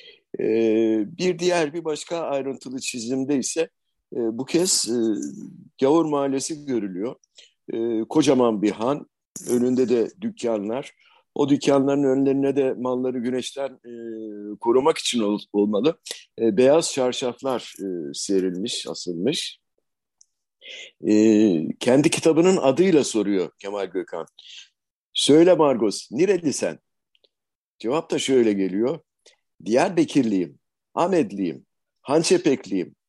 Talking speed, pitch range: 105 wpm, 115-165 Hz